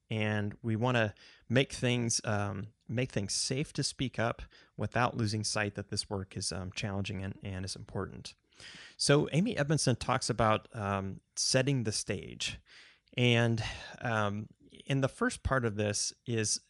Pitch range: 100-125 Hz